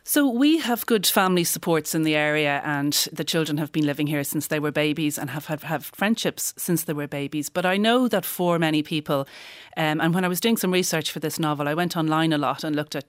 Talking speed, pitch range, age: 255 wpm, 155-185 Hz, 30-49